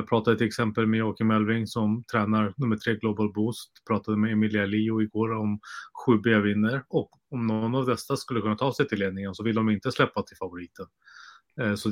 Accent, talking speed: Norwegian, 210 wpm